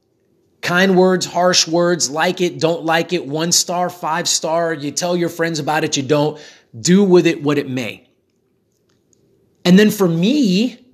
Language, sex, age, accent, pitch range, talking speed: English, male, 30-49, American, 160-210 Hz, 170 wpm